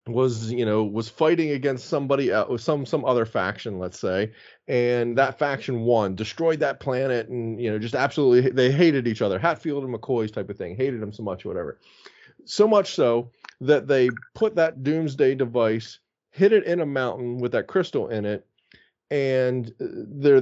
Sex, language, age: male, English, 30-49